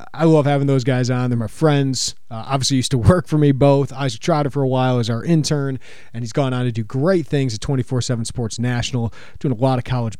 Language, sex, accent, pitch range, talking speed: English, male, American, 120-150 Hz, 245 wpm